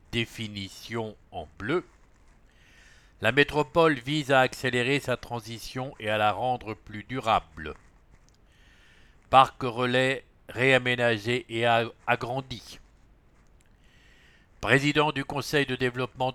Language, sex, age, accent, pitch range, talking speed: English, male, 60-79, French, 110-135 Hz, 90 wpm